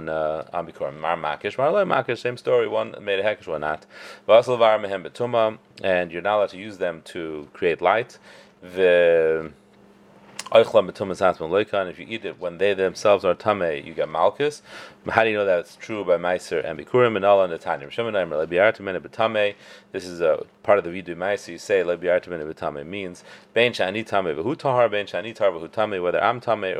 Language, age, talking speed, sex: English, 30-49, 135 wpm, male